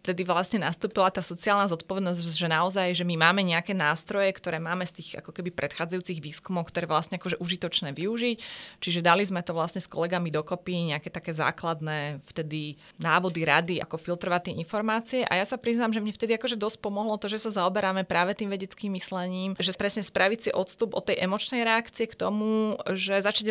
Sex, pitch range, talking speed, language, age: female, 175-210 Hz, 195 wpm, Slovak, 20-39